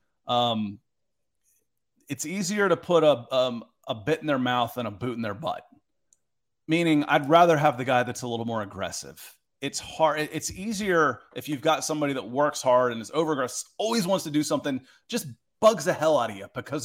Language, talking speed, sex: English, 200 wpm, male